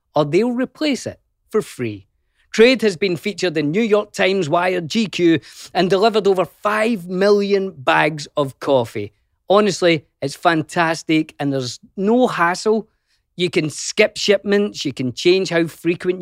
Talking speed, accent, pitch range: 150 wpm, British, 140-200 Hz